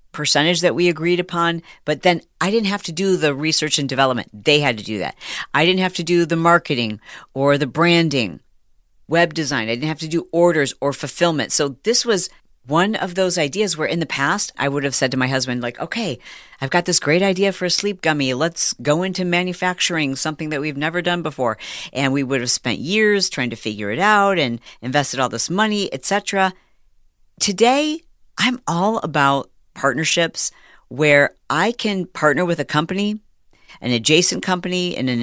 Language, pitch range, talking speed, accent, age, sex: English, 140-185 Hz, 195 wpm, American, 50-69, female